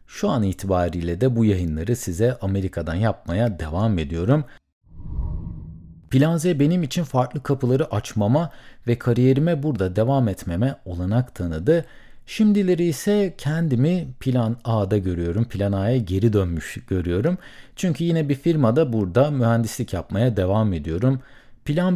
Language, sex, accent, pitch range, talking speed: Turkish, male, native, 100-150 Hz, 125 wpm